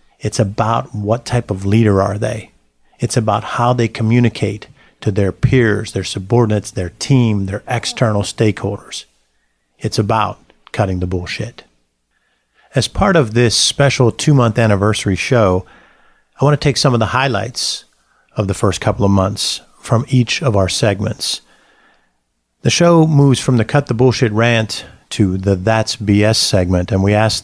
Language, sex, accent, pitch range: English, male, American, 100-120 Hz